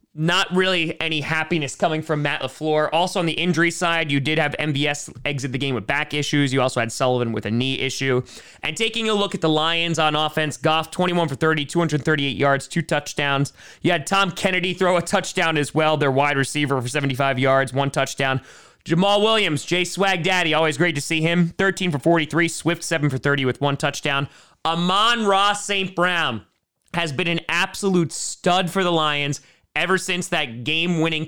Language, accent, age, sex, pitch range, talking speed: English, American, 30-49, male, 140-175 Hz, 195 wpm